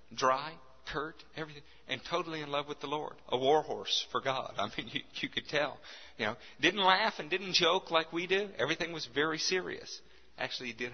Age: 50-69